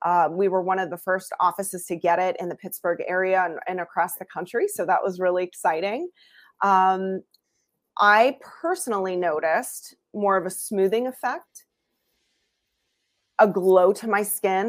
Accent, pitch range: American, 185-220 Hz